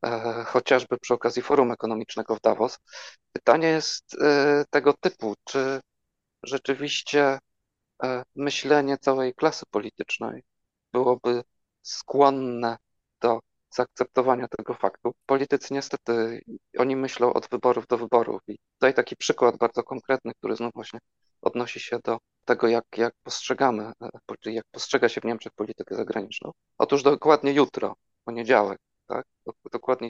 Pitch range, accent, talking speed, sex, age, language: 115-135 Hz, native, 120 wpm, male, 40-59, Polish